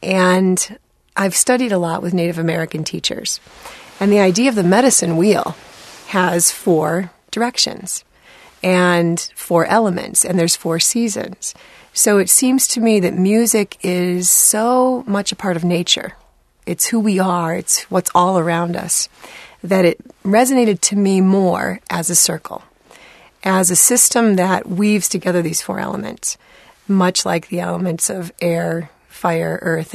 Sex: female